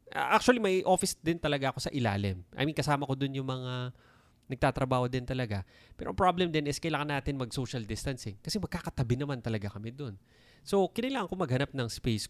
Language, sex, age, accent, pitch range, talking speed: Filipino, male, 20-39, native, 115-165 Hz, 185 wpm